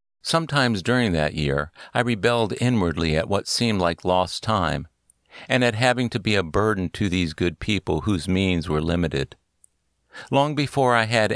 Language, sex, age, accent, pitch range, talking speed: English, male, 50-69, American, 80-115 Hz, 170 wpm